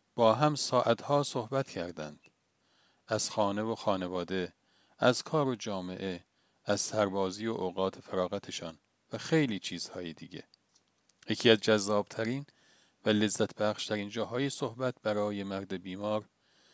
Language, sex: Persian, male